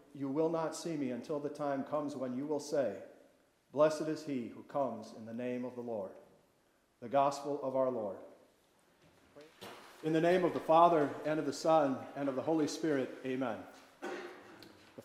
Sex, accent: male, American